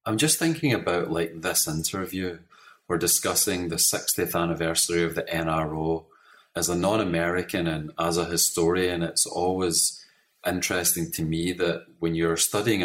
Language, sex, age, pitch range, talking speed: English, male, 30-49, 80-90 Hz, 145 wpm